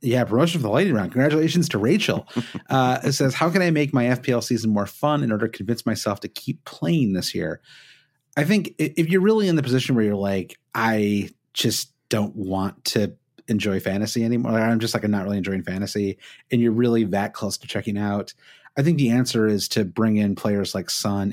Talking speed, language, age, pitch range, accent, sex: 215 wpm, English, 30-49, 105-135 Hz, American, male